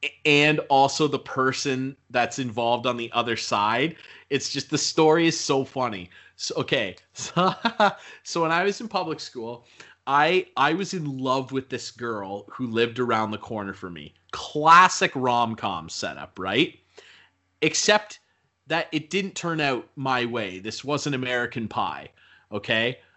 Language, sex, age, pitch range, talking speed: English, male, 30-49, 110-155 Hz, 155 wpm